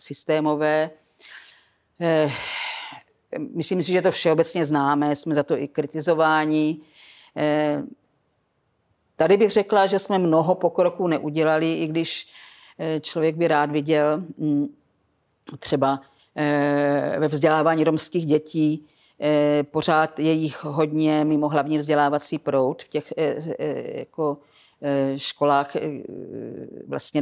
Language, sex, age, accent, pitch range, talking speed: Czech, female, 50-69, native, 145-155 Hz, 95 wpm